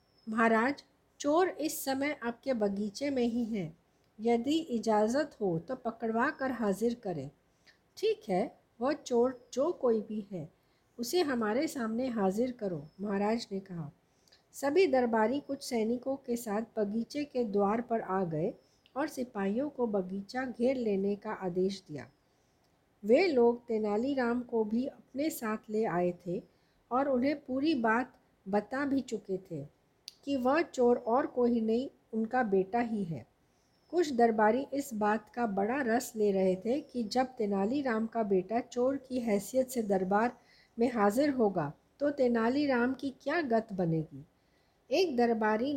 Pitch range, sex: 205-265 Hz, female